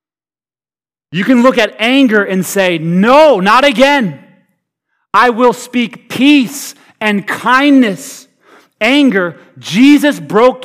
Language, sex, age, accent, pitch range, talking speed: English, male, 30-49, American, 145-210 Hz, 105 wpm